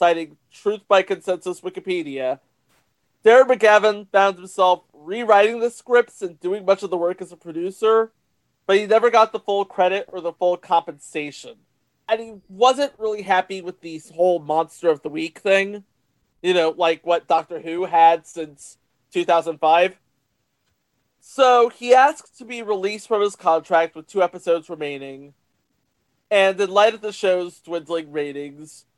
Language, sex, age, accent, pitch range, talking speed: English, male, 30-49, American, 160-210 Hz, 155 wpm